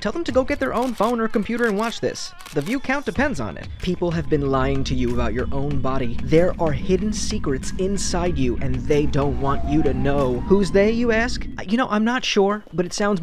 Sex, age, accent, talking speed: male, 20-39, American, 245 wpm